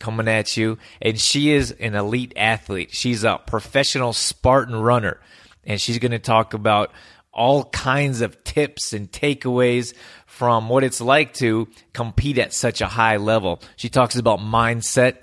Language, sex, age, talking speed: English, male, 30-49, 160 wpm